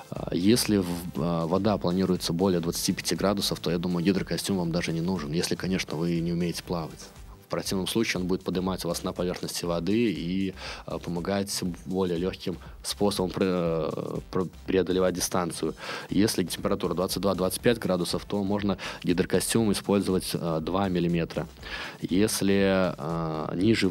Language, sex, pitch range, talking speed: Russian, male, 85-100 Hz, 125 wpm